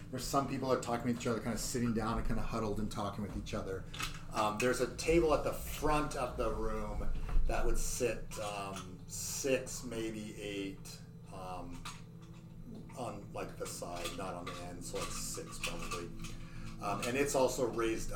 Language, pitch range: English, 110-145 Hz